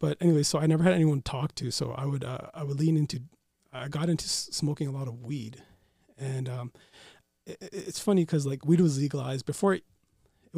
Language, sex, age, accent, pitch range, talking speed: English, male, 30-49, American, 130-150 Hz, 220 wpm